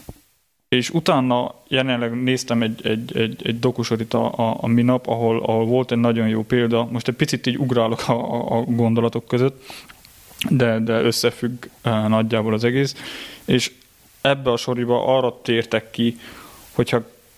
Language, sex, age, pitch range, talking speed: Hungarian, male, 20-39, 115-125 Hz, 150 wpm